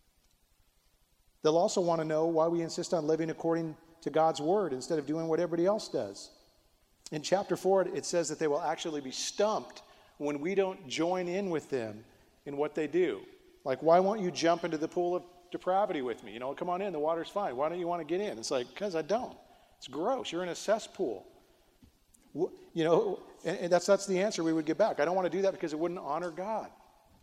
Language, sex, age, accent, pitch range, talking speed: English, male, 40-59, American, 165-205 Hz, 225 wpm